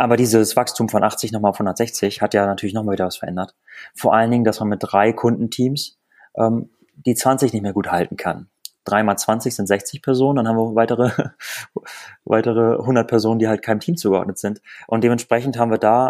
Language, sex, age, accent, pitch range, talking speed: German, male, 30-49, German, 105-125 Hz, 200 wpm